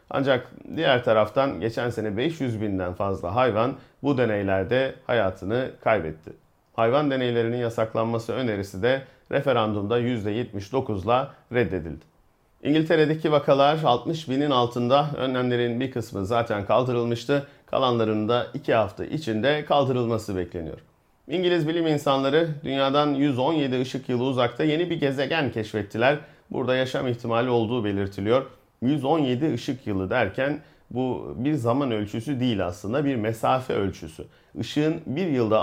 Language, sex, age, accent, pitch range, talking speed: Turkish, male, 40-59, native, 110-145 Hz, 115 wpm